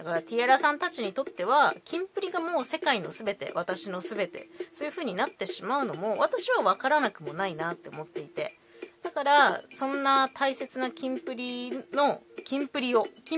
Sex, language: female, Japanese